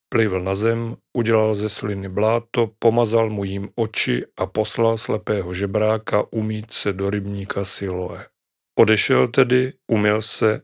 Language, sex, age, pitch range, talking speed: Czech, male, 40-59, 100-115 Hz, 135 wpm